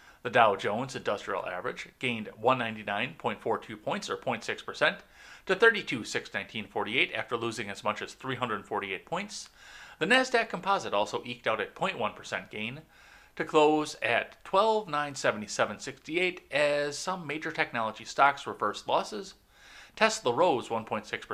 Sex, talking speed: male, 115 wpm